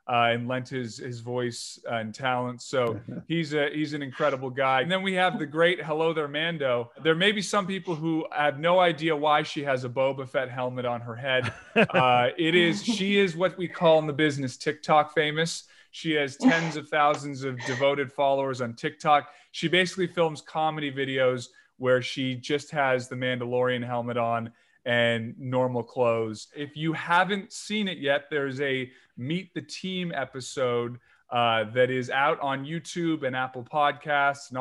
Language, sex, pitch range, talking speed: English, male, 125-160 Hz, 180 wpm